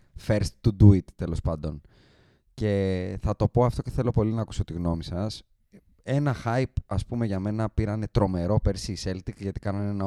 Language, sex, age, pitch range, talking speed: Greek, male, 20-39, 90-115 Hz, 190 wpm